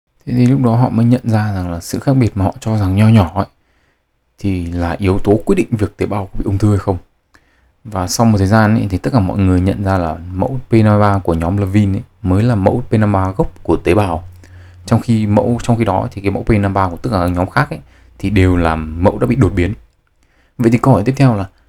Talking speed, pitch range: 265 wpm, 90-115 Hz